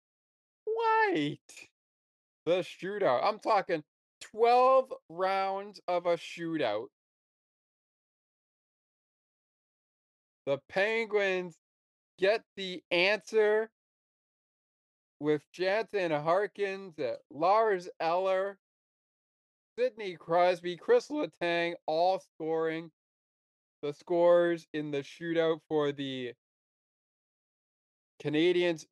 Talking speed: 70 wpm